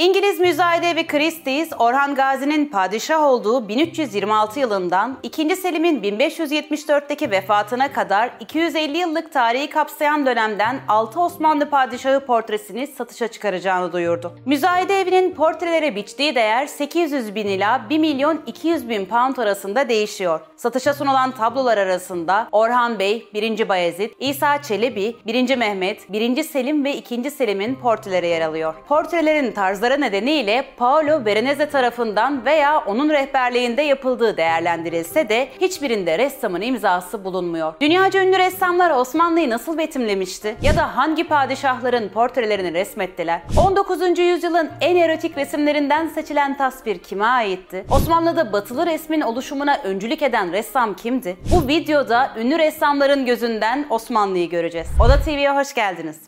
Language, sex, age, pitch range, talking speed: Turkish, female, 30-49, 210-300 Hz, 125 wpm